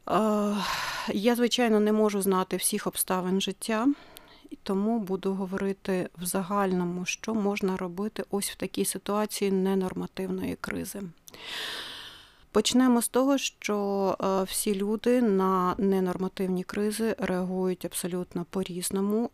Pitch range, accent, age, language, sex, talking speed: 185-210 Hz, native, 30-49, Ukrainian, female, 110 wpm